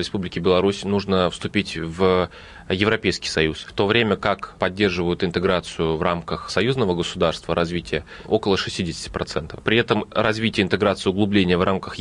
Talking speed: 135 wpm